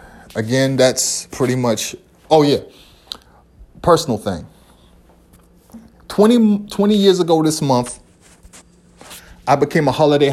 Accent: American